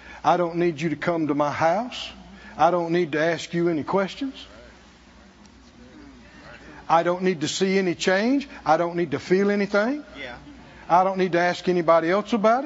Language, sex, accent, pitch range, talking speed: English, male, American, 180-300 Hz, 180 wpm